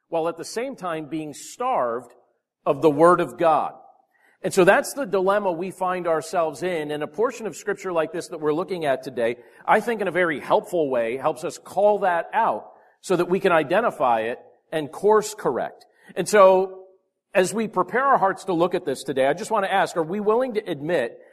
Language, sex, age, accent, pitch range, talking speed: English, male, 50-69, American, 160-215 Hz, 215 wpm